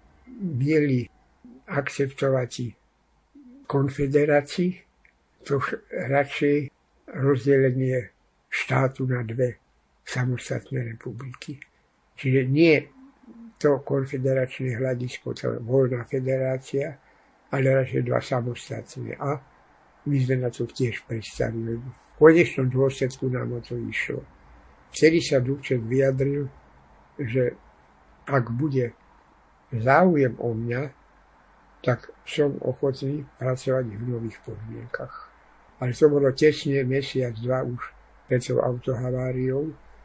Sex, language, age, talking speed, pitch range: male, Slovak, 60-79, 95 wpm, 125-140 Hz